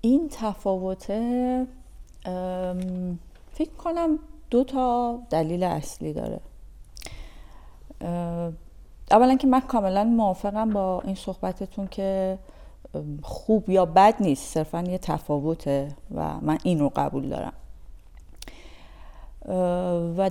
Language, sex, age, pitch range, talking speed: Persian, female, 40-59, 165-210 Hz, 90 wpm